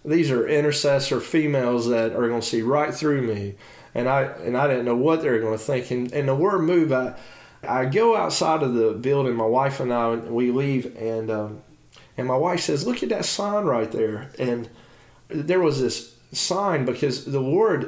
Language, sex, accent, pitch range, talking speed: English, male, American, 115-145 Hz, 200 wpm